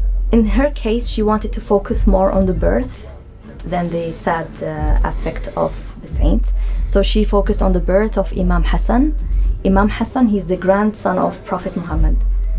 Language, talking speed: English, 170 wpm